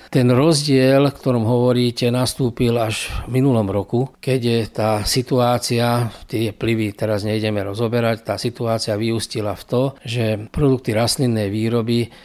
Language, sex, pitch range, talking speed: Slovak, male, 115-140 Hz, 135 wpm